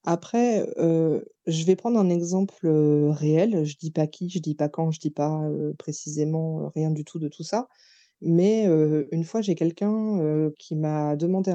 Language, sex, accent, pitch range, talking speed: French, female, French, 155-195 Hz, 215 wpm